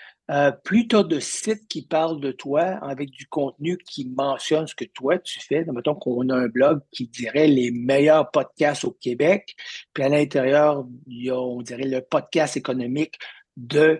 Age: 60-79